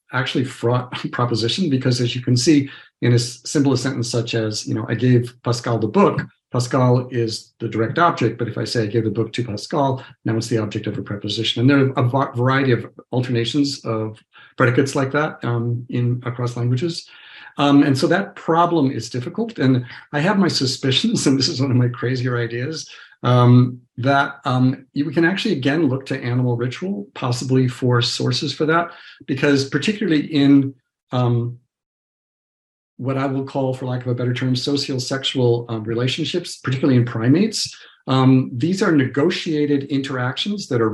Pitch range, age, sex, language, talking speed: 120-145 Hz, 50-69, male, English, 180 wpm